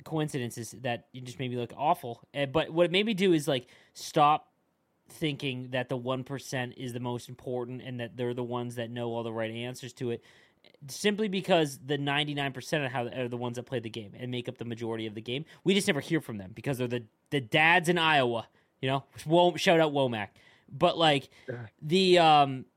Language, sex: English, male